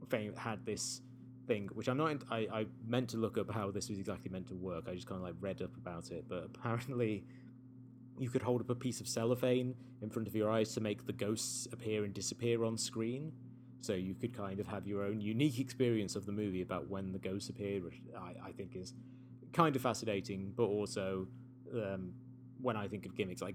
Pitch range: 100-125 Hz